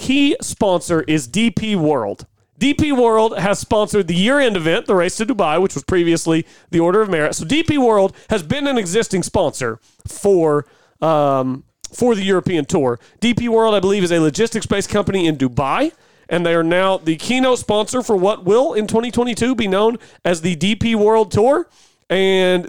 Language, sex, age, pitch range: English, male, 40-59, 165-225 Hz